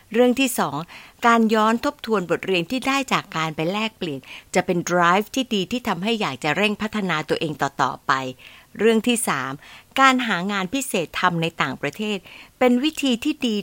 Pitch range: 175-245 Hz